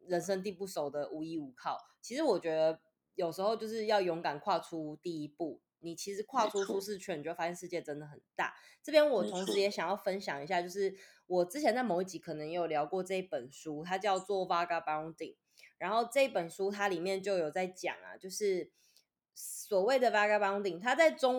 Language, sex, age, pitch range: Chinese, female, 20-39, 165-215 Hz